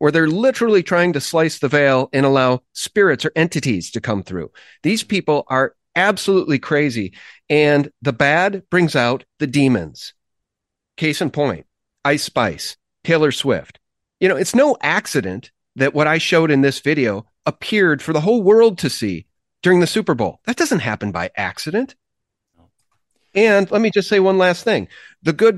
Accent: American